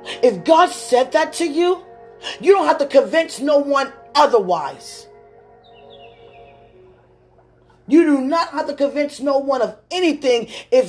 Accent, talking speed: American, 140 wpm